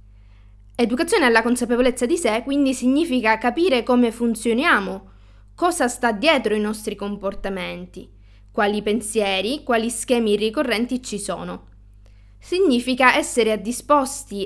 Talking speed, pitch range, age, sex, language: 110 wpm, 180-255 Hz, 20-39, female, Italian